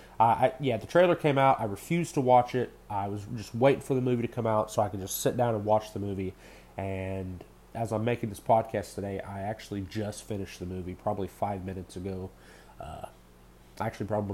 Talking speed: 210 wpm